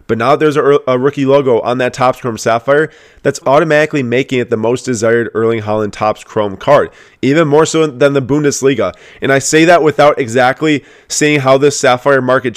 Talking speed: 195 wpm